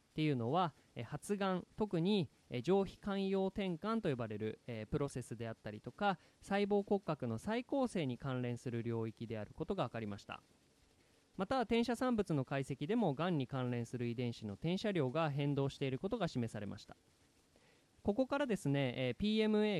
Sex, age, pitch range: male, 20-39, 125-200 Hz